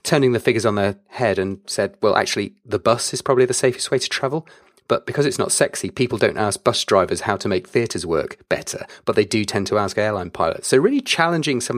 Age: 30-49